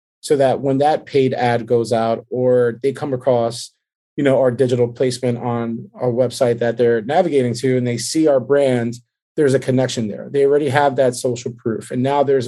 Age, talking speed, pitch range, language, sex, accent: 20-39, 200 wpm, 120-145 Hz, English, male, American